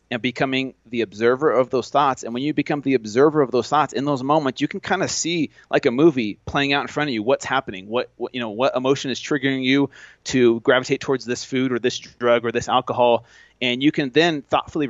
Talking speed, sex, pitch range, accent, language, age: 240 wpm, male, 120-140 Hz, American, English, 30-49